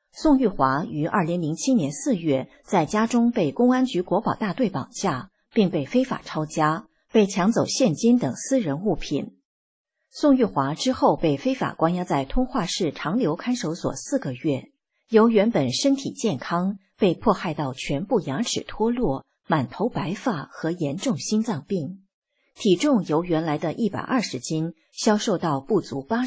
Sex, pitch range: female, 155-240 Hz